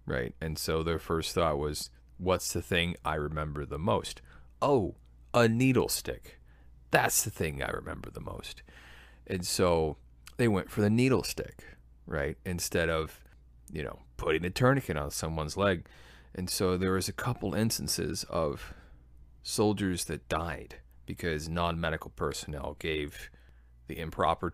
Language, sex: English, male